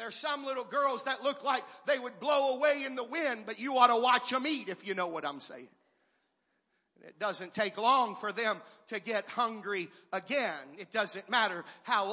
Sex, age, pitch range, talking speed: male, 40-59, 225-315 Hz, 205 wpm